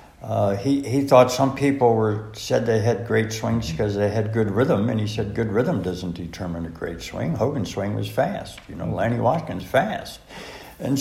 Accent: American